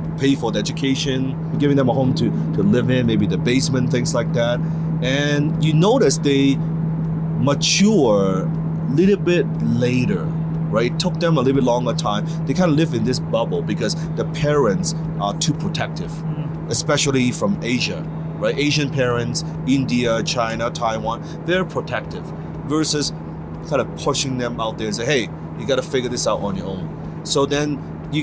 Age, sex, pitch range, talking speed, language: 30-49, male, 130-165 Hz, 175 wpm, English